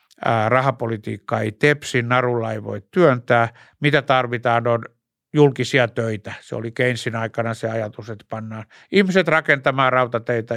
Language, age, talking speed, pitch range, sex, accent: Finnish, 60-79, 130 wpm, 115-135 Hz, male, native